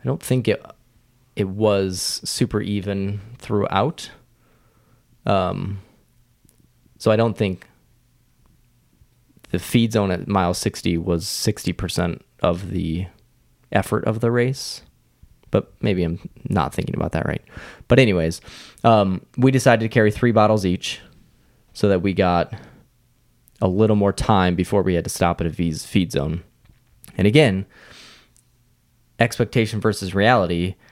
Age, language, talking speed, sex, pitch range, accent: 20-39, English, 135 wpm, male, 90-115 Hz, American